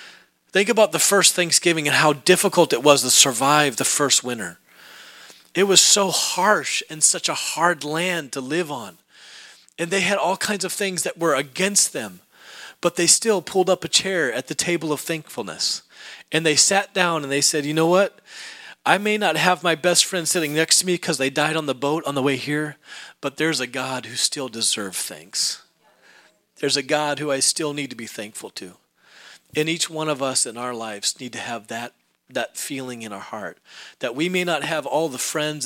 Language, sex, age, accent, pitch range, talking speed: English, male, 40-59, American, 130-170 Hz, 210 wpm